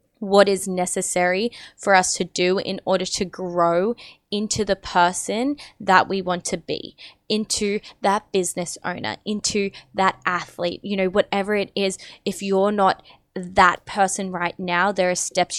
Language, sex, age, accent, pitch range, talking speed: English, female, 20-39, Australian, 180-210 Hz, 160 wpm